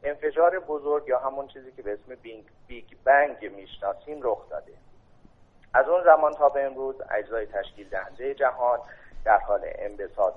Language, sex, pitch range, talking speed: Persian, male, 110-160 Hz, 150 wpm